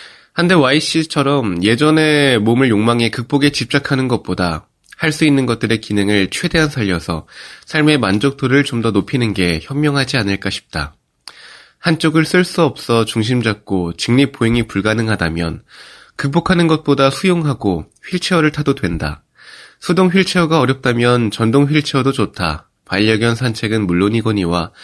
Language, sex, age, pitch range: Korean, male, 20-39, 100-145 Hz